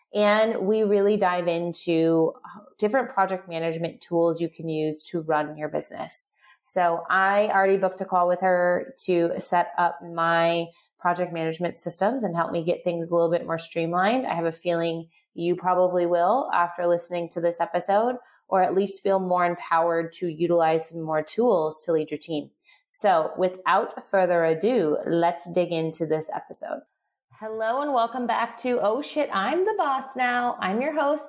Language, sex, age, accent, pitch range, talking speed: English, female, 30-49, American, 170-225 Hz, 175 wpm